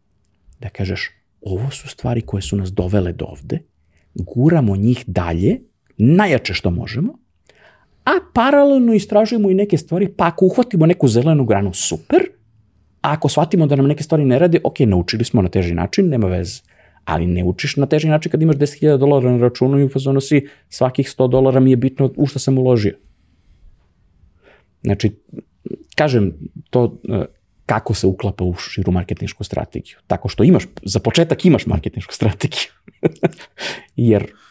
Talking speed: 155 wpm